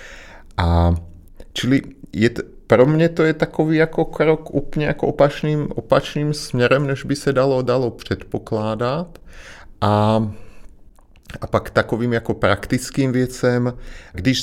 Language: Czech